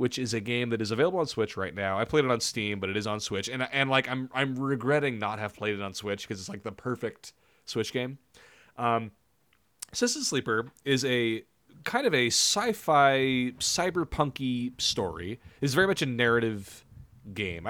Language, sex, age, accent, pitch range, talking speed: English, male, 30-49, American, 100-135 Hz, 195 wpm